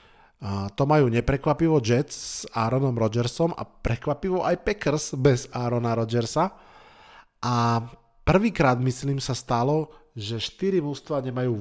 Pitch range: 115-140 Hz